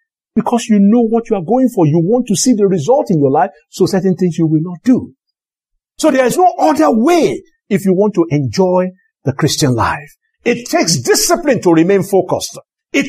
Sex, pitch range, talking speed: male, 175-270 Hz, 205 wpm